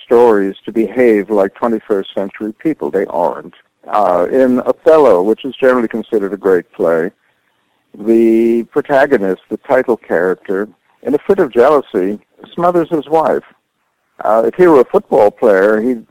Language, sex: English, male